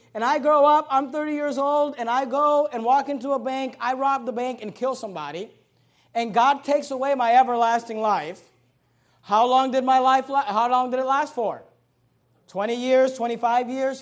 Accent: American